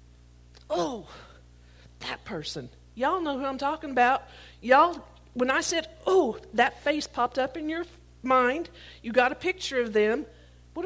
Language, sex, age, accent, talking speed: English, female, 50-69, American, 160 wpm